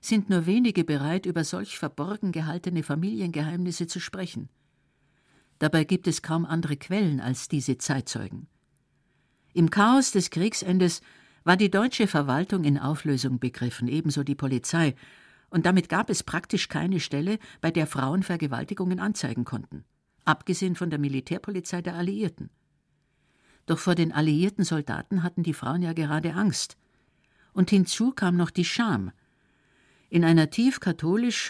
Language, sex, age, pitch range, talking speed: German, female, 60-79, 145-190 Hz, 140 wpm